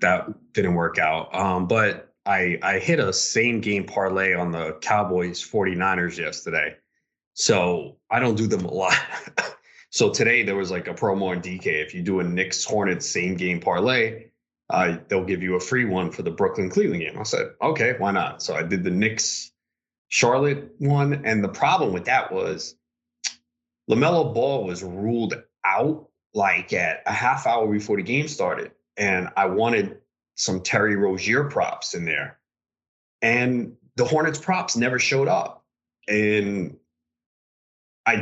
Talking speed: 155 wpm